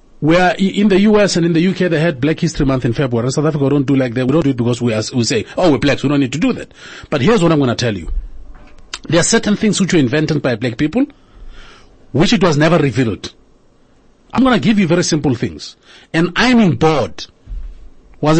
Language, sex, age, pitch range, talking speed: English, male, 40-59, 140-200 Hz, 245 wpm